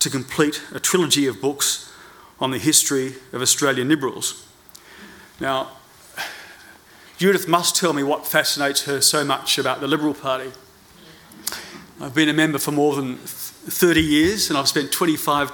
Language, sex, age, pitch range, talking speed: English, male, 40-59, 135-160 Hz, 150 wpm